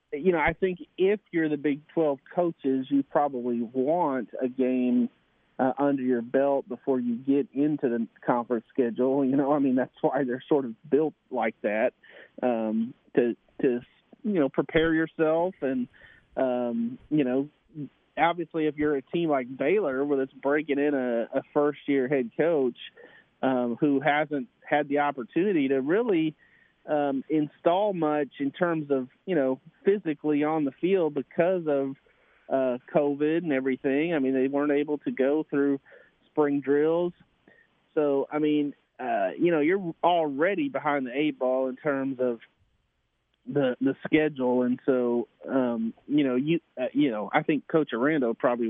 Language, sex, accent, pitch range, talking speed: English, male, American, 130-155 Hz, 165 wpm